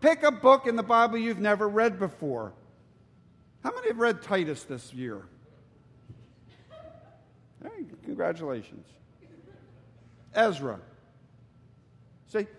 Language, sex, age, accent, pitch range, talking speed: English, male, 50-69, American, 155-235 Hz, 100 wpm